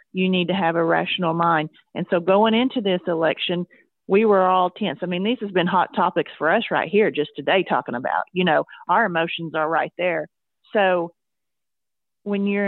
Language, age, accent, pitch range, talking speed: English, 40-59, American, 170-210 Hz, 200 wpm